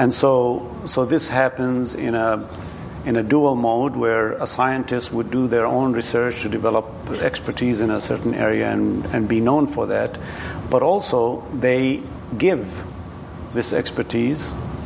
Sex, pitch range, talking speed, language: male, 115-130 Hz, 155 wpm, English